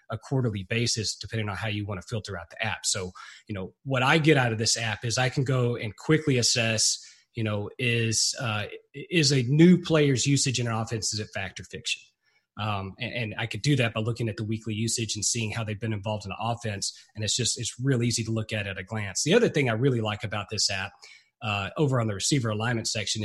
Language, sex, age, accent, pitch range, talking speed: English, male, 30-49, American, 110-135 Hz, 250 wpm